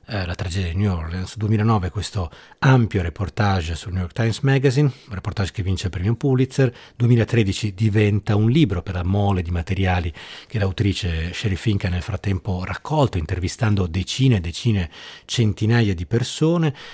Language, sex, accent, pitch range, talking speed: Italian, male, native, 95-115 Hz, 160 wpm